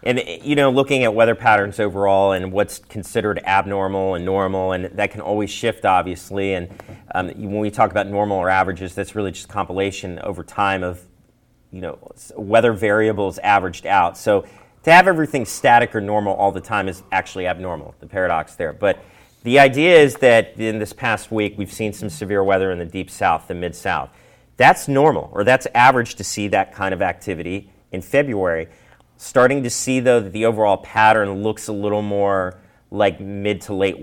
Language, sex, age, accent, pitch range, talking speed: English, male, 30-49, American, 95-115 Hz, 190 wpm